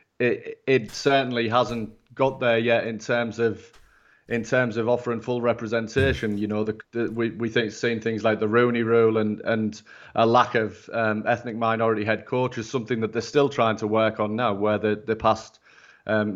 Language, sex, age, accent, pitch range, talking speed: English, male, 30-49, British, 110-125 Hz, 195 wpm